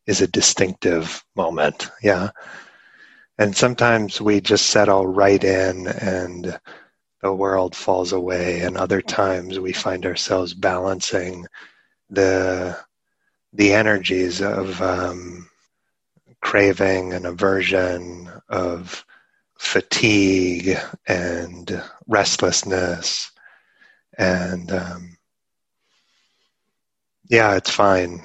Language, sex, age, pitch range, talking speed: English, male, 30-49, 90-95 Hz, 85 wpm